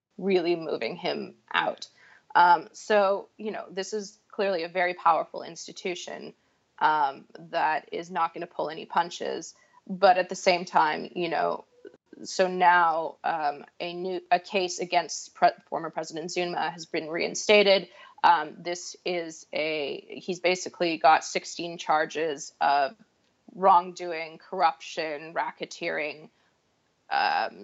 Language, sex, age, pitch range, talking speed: English, female, 20-39, 170-200 Hz, 130 wpm